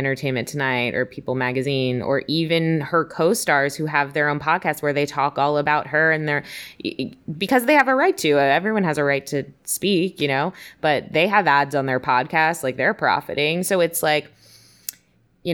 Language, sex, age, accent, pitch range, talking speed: English, female, 20-39, American, 135-160 Hz, 195 wpm